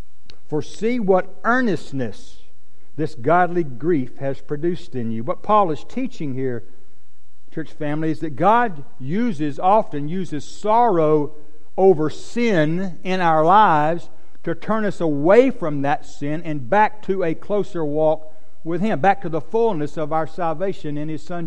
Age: 60-79